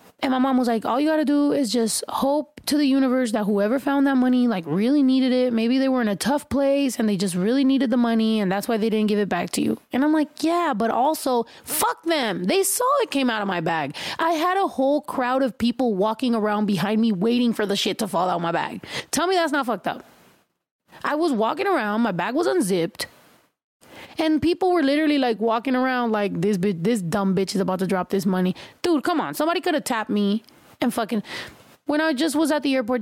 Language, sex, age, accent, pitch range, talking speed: English, female, 20-39, American, 220-290 Hz, 245 wpm